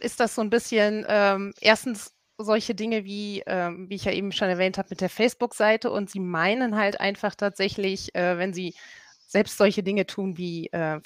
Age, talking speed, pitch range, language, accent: 30-49, 195 wpm, 180-205 Hz, German, German